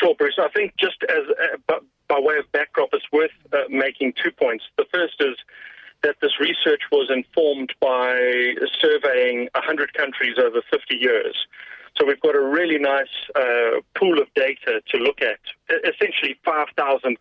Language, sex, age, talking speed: English, male, 40-59, 165 wpm